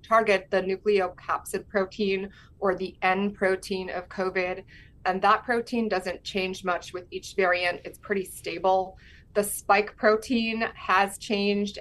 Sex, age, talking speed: female, 20-39, 135 wpm